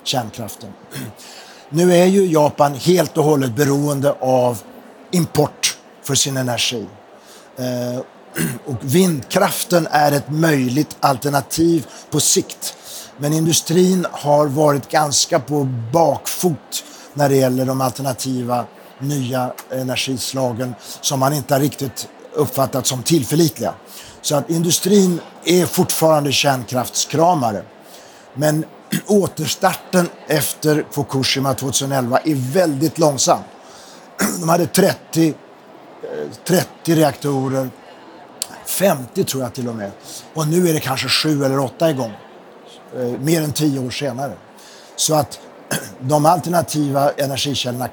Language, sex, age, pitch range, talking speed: Swedish, male, 60-79, 130-160 Hz, 110 wpm